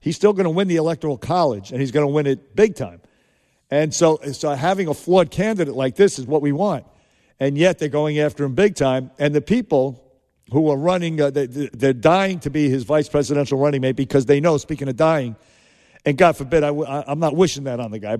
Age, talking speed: 50-69, 230 wpm